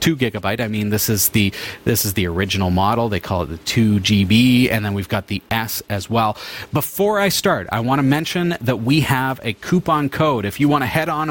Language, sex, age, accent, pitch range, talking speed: English, male, 40-59, American, 115-165 Hz, 235 wpm